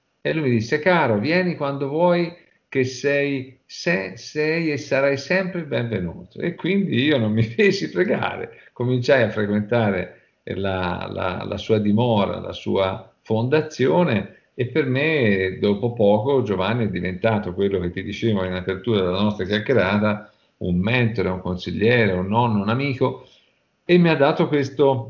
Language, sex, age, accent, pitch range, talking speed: Italian, male, 50-69, native, 100-130 Hz, 155 wpm